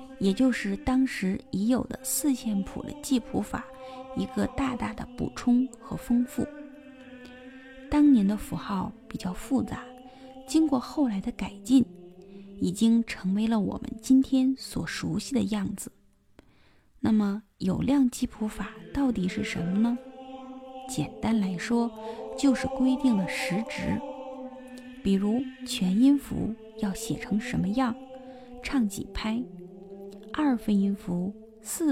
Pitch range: 200-260 Hz